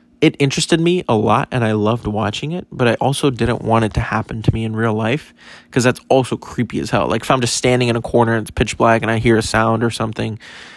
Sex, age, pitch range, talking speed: male, 20-39, 110-130 Hz, 265 wpm